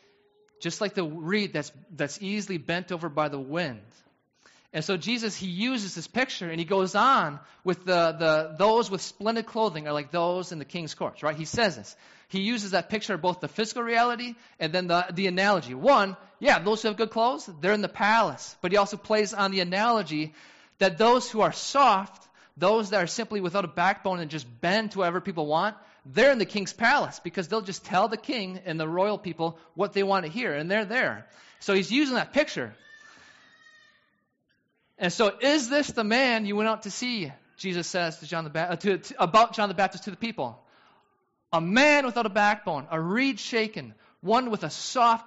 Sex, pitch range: male, 170-220 Hz